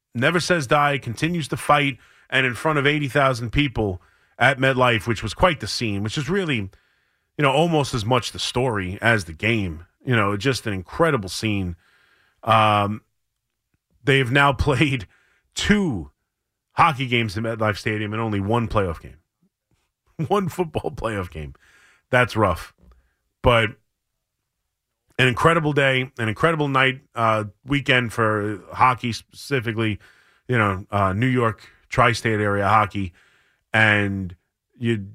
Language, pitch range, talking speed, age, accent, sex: English, 100-130 Hz, 140 wpm, 30-49, American, male